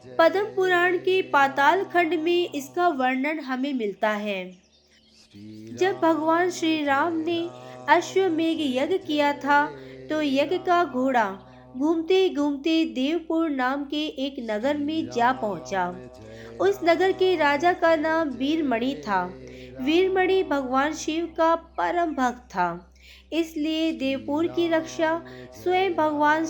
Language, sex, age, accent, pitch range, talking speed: Hindi, female, 20-39, native, 245-335 Hz, 120 wpm